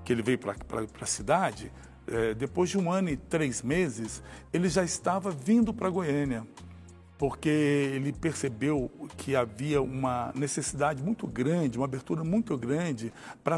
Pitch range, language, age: 125-175 Hz, Portuguese, 60-79